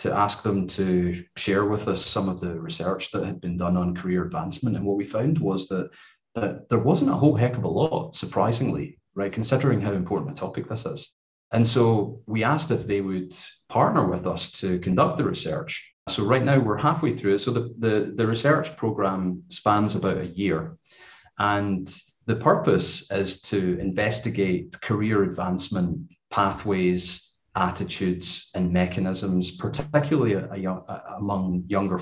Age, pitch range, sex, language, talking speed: 30-49, 95-115 Hz, male, English, 160 wpm